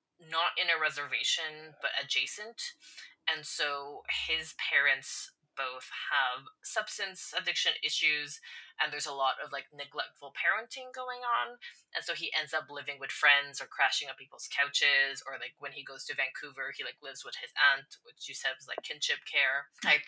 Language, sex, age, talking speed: English, female, 20-39, 175 wpm